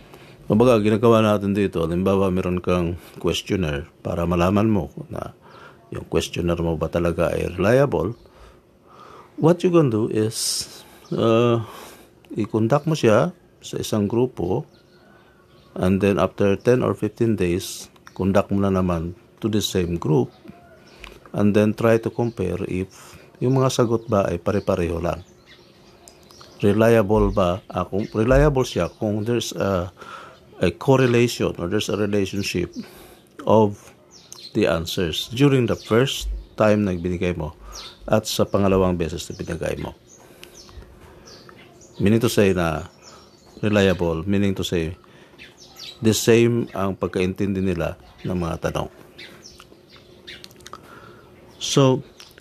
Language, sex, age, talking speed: Filipino, male, 50-69, 125 wpm